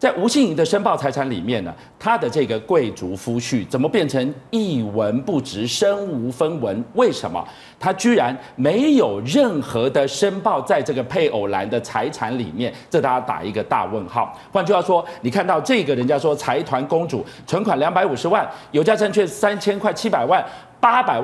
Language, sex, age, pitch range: Chinese, male, 40-59, 130-210 Hz